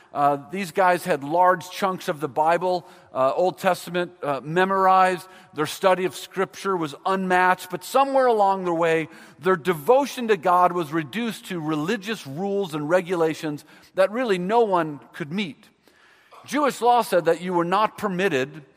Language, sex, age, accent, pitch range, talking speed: English, male, 50-69, American, 165-215 Hz, 160 wpm